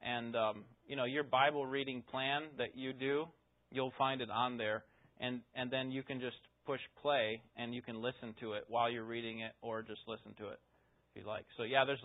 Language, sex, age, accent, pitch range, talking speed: English, male, 30-49, American, 115-165 Hz, 225 wpm